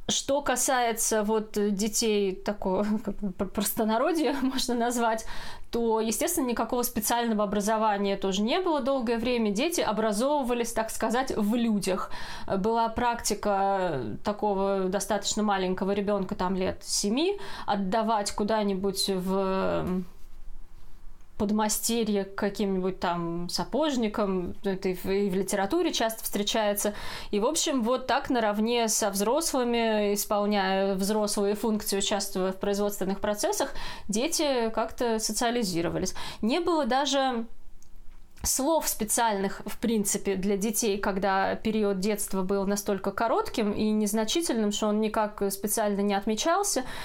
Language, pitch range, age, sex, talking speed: Russian, 205-240 Hz, 20-39, female, 115 wpm